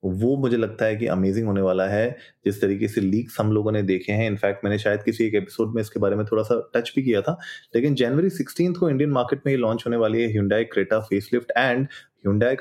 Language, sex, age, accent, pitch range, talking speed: Hindi, male, 20-39, native, 100-115 Hz, 225 wpm